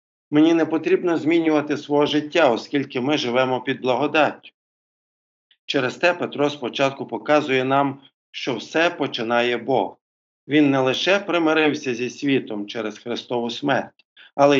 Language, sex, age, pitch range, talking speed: Ukrainian, male, 50-69, 120-150 Hz, 125 wpm